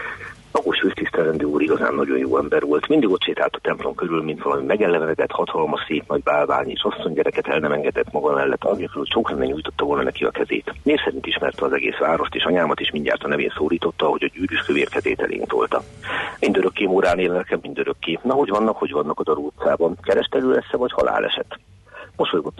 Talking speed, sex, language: 190 wpm, male, Hungarian